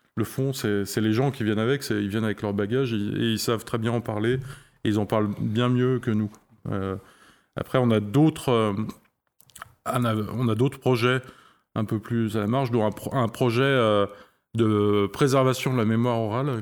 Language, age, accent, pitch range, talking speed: French, 20-39, French, 105-125 Hz, 210 wpm